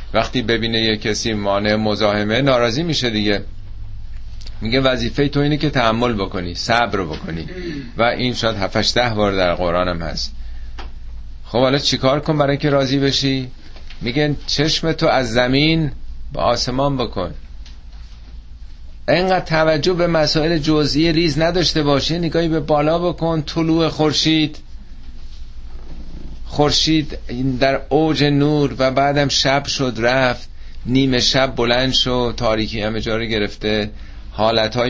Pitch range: 100-145 Hz